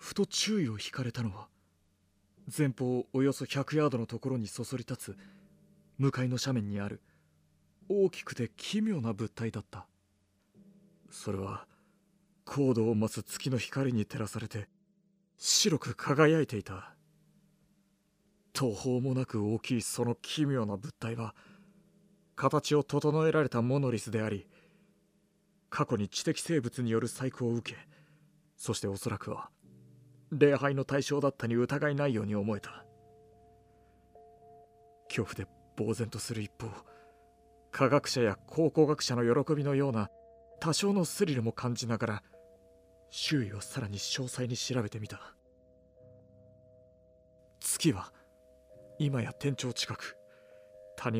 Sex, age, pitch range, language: male, 40-59, 105-150 Hz, Japanese